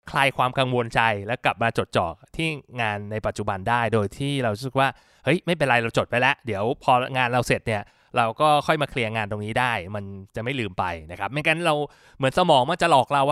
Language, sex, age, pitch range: Thai, male, 20-39, 110-145 Hz